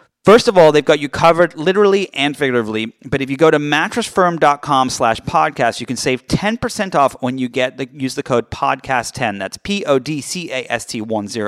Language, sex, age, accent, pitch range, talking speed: English, male, 30-49, American, 115-150 Hz, 175 wpm